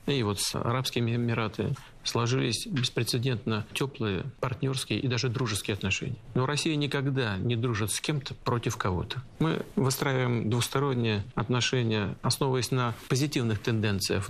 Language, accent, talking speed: Russian, native, 125 wpm